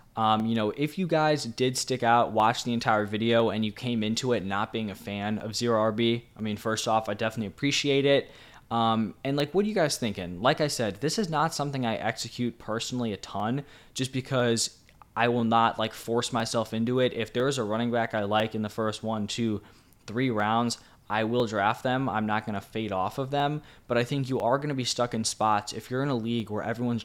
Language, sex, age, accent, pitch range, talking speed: English, male, 10-29, American, 110-125 Hz, 235 wpm